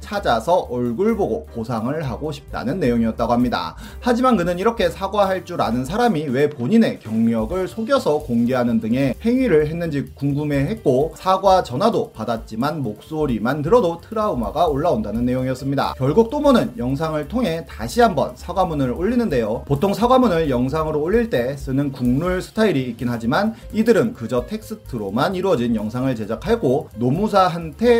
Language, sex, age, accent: Korean, male, 30-49, native